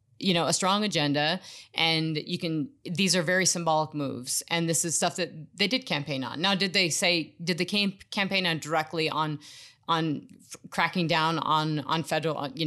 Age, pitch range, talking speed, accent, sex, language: 30-49, 150-185 Hz, 185 wpm, American, female, English